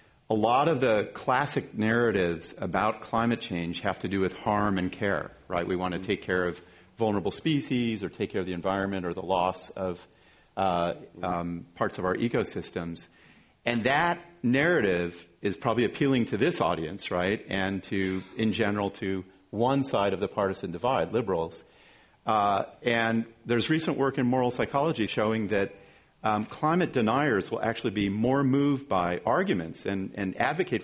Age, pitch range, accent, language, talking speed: 40-59, 95-120 Hz, American, English, 165 wpm